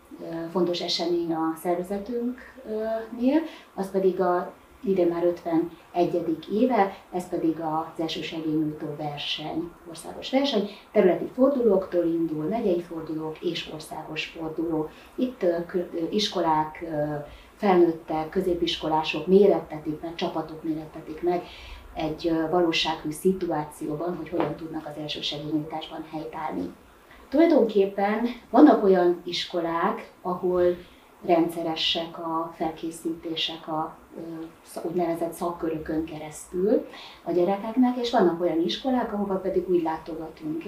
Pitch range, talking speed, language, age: 165-190 Hz, 100 wpm, Hungarian, 30-49